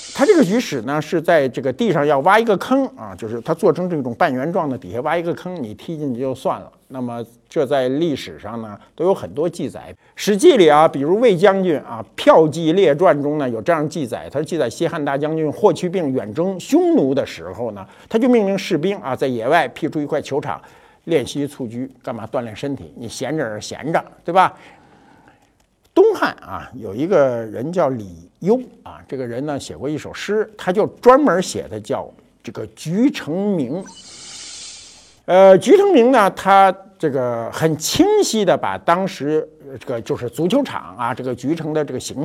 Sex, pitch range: male, 135-195 Hz